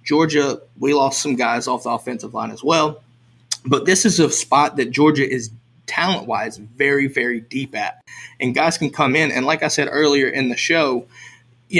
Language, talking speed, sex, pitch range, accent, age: English, 195 wpm, male, 125-150 Hz, American, 20-39